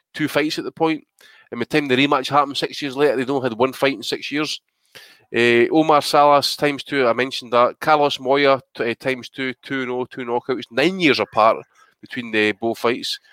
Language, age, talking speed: English, 20-39, 220 wpm